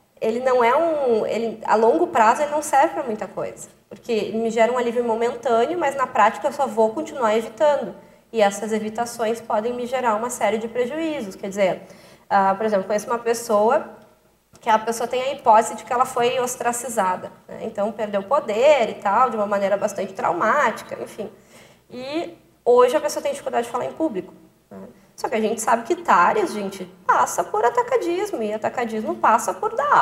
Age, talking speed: 20-39, 195 wpm